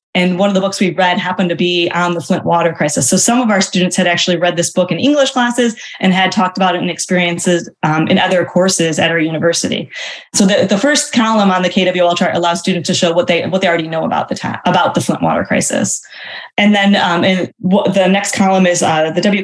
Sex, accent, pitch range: female, American, 175-200 Hz